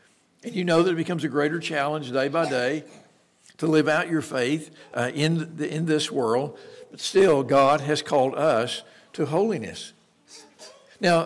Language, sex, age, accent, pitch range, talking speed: English, male, 60-79, American, 135-175 Hz, 165 wpm